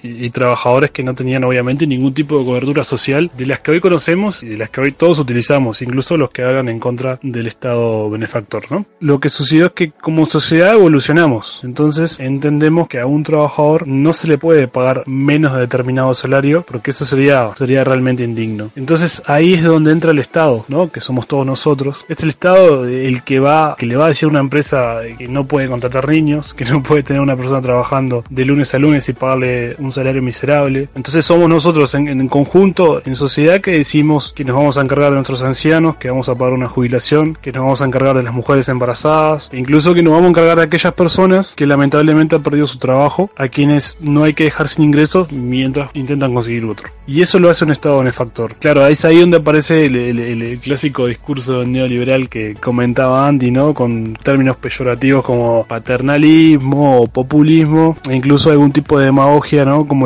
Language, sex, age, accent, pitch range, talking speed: Spanish, male, 20-39, Argentinian, 125-150 Hz, 205 wpm